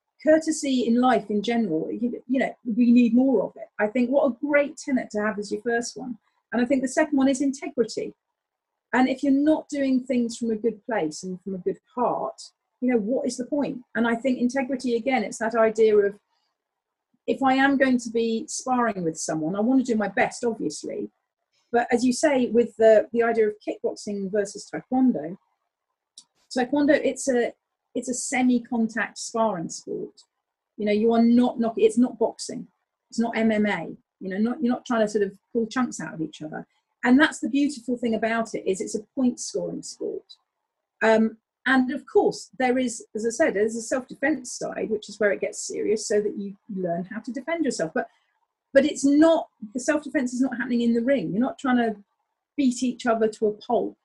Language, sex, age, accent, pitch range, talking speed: English, female, 40-59, British, 220-270 Hz, 210 wpm